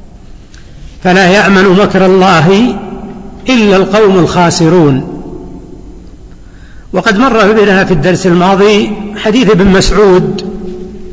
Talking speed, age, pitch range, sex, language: 85 wpm, 60-79, 180-210 Hz, male, Arabic